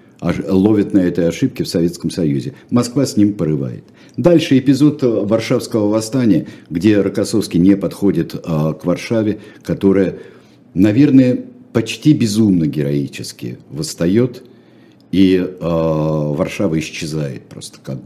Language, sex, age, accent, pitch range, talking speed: Russian, male, 60-79, native, 85-125 Hz, 105 wpm